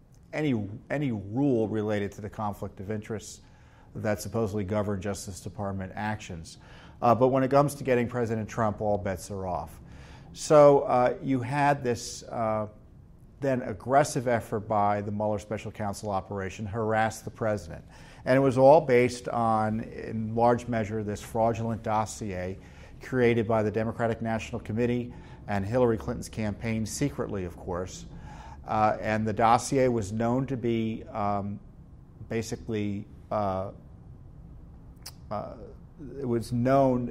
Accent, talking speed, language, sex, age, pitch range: American, 140 wpm, English, male, 50-69, 95-115 Hz